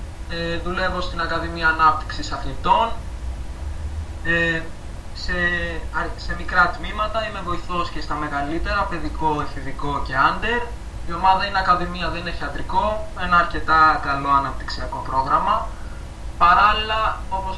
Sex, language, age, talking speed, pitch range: male, Greek, 20-39, 115 wpm, 140-175 Hz